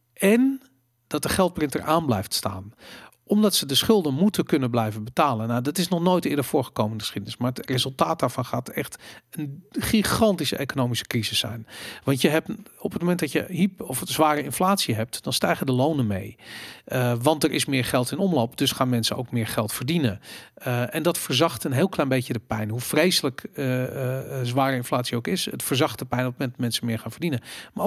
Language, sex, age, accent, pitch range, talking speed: Dutch, male, 40-59, Dutch, 125-170 Hz, 215 wpm